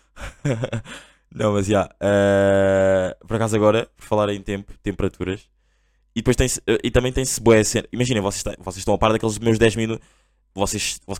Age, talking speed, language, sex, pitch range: 20-39, 165 wpm, Portuguese, male, 100-120 Hz